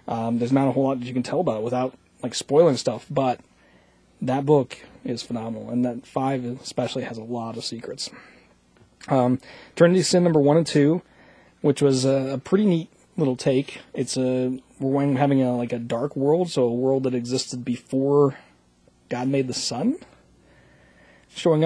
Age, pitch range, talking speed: 30-49, 125-145 Hz, 180 wpm